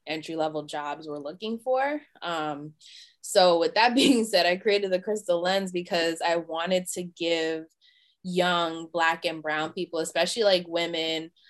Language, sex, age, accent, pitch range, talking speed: English, female, 20-39, American, 160-185 Hz, 155 wpm